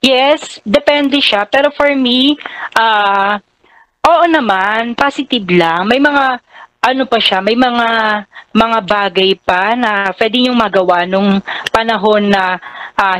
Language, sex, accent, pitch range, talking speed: Filipino, female, native, 180-235 Hz, 130 wpm